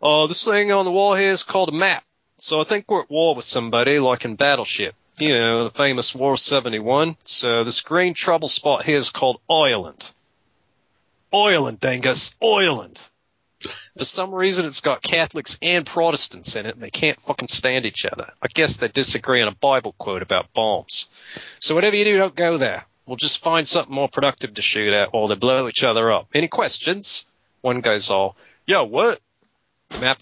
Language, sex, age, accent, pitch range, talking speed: English, male, 40-59, American, 115-175 Hz, 195 wpm